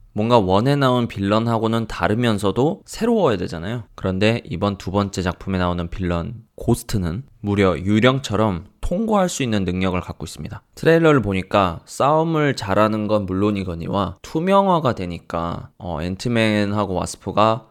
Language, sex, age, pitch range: Korean, male, 20-39, 90-115 Hz